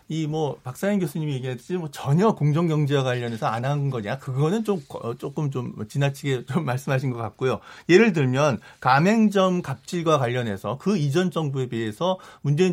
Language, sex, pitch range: Korean, male, 130-180 Hz